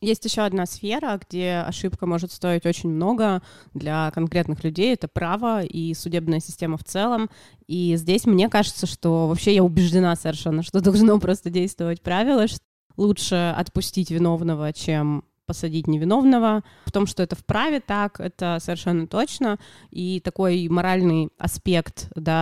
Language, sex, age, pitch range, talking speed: Russian, female, 20-39, 160-195 Hz, 145 wpm